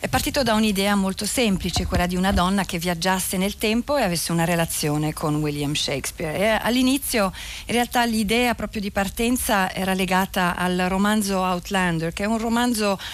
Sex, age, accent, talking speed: female, 40-59, native, 170 wpm